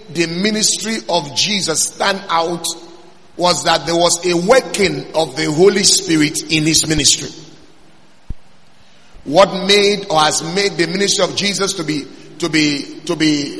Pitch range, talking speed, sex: 170-210 Hz, 150 wpm, male